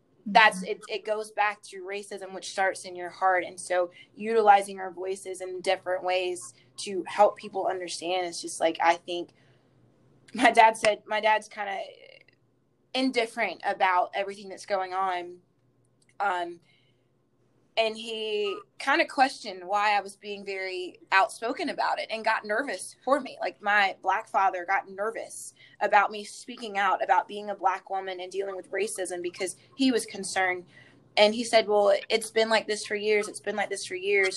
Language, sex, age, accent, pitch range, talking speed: English, female, 20-39, American, 190-225 Hz, 175 wpm